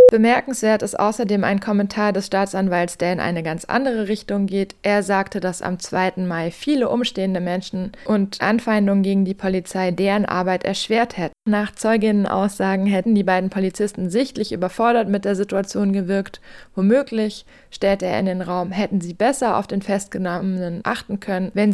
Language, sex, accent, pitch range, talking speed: German, female, German, 190-215 Hz, 165 wpm